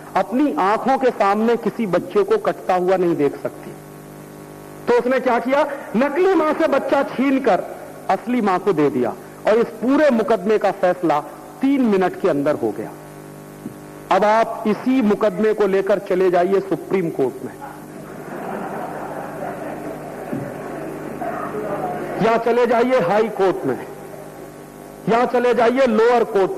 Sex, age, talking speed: male, 50-69, 140 wpm